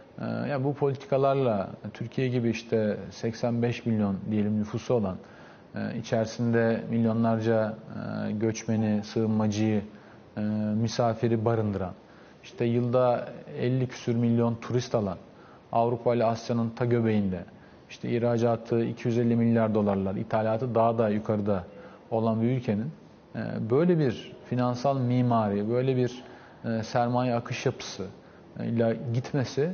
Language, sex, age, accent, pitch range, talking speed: Turkish, male, 40-59, native, 115-140 Hz, 105 wpm